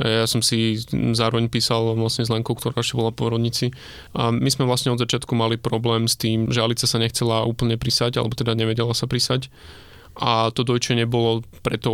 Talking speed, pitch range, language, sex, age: 185 wpm, 110-120 Hz, Slovak, male, 20-39